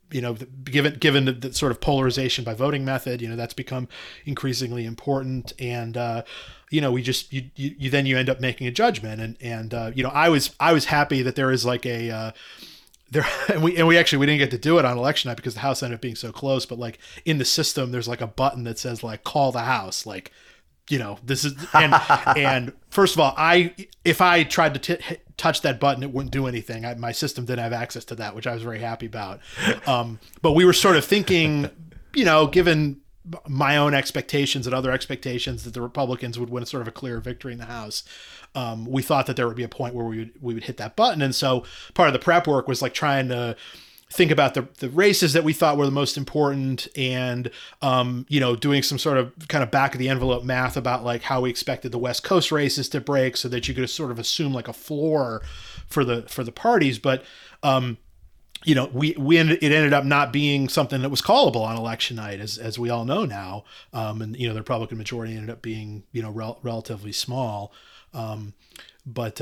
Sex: male